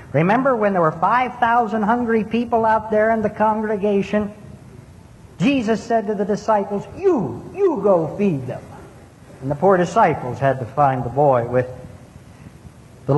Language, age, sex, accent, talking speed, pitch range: English, 60-79, male, American, 150 wpm, 155-235 Hz